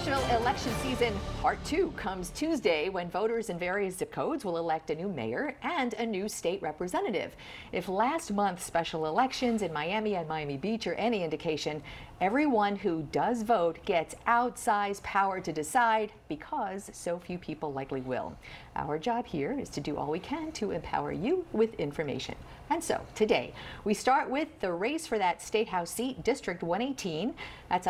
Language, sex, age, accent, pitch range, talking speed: English, female, 50-69, American, 175-250 Hz, 170 wpm